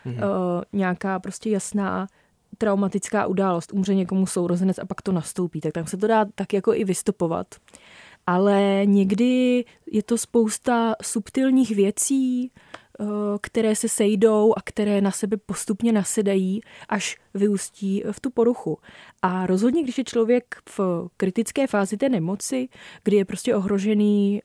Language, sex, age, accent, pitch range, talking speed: Czech, female, 20-39, native, 195-225 Hz, 135 wpm